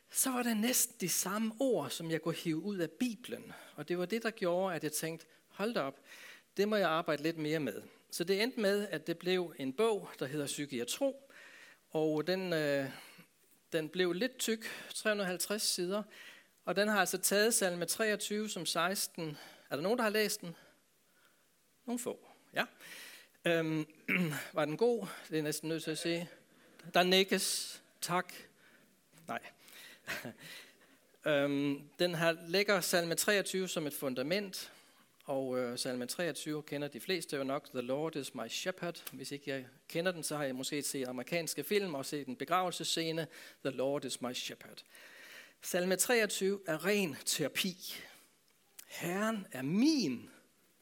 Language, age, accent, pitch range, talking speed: Danish, 60-79, native, 155-210 Hz, 165 wpm